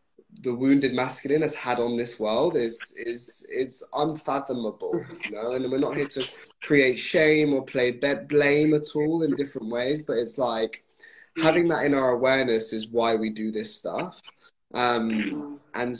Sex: male